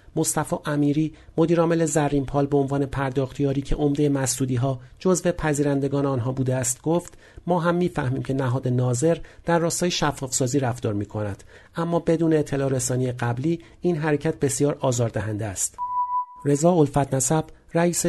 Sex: male